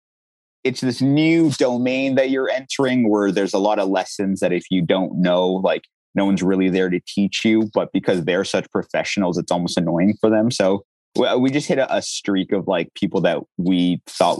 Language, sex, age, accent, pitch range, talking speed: English, male, 30-49, American, 95-130 Hz, 205 wpm